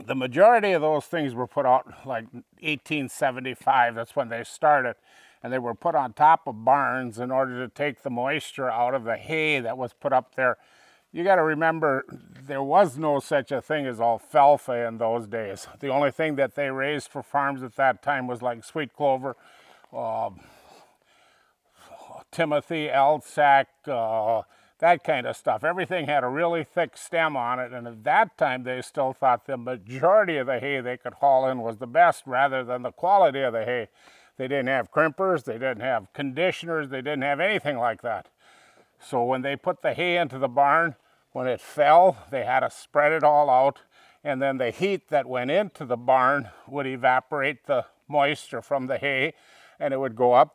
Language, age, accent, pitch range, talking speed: English, 50-69, American, 125-150 Hz, 190 wpm